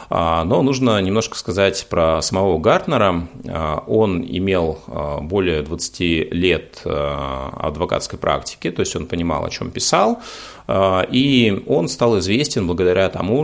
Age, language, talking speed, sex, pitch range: 30-49, Russian, 120 wpm, male, 80-95 Hz